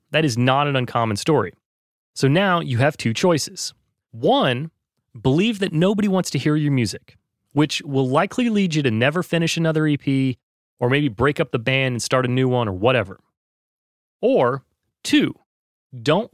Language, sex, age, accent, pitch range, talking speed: English, male, 30-49, American, 130-175 Hz, 175 wpm